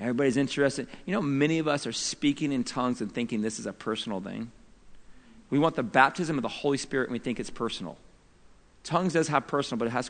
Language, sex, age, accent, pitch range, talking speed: English, male, 40-59, American, 115-155 Hz, 225 wpm